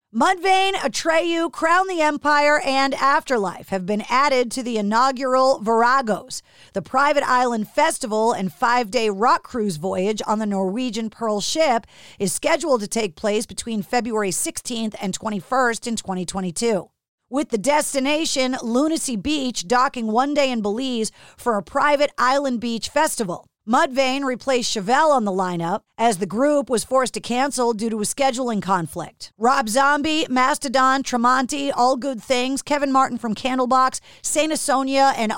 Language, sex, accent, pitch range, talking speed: English, female, American, 220-280 Hz, 150 wpm